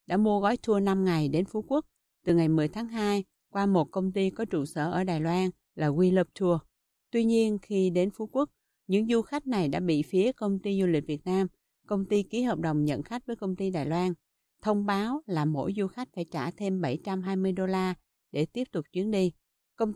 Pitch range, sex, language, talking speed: 170-210 Hz, female, Vietnamese, 230 wpm